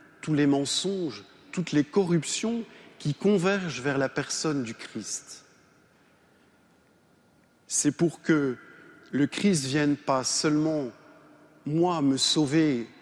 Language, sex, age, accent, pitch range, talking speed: French, male, 50-69, French, 135-175 Hz, 110 wpm